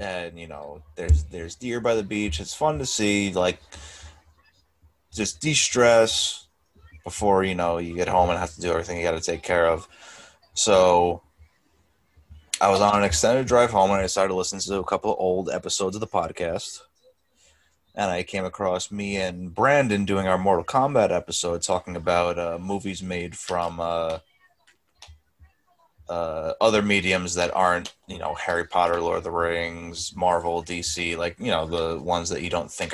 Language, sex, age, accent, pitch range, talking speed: English, male, 20-39, American, 85-100 Hz, 180 wpm